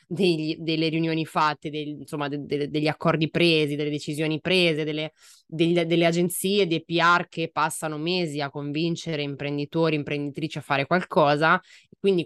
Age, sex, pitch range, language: 20-39, female, 145-165 Hz, Italian